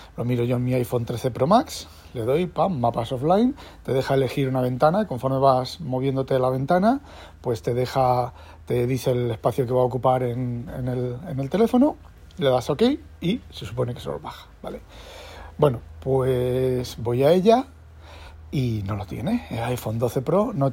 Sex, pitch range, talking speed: male, 105-145 Hz, 185 wpm